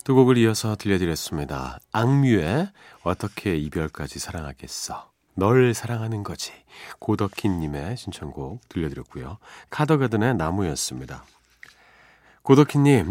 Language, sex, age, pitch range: Korean, male, 40-59, 80-120 Hz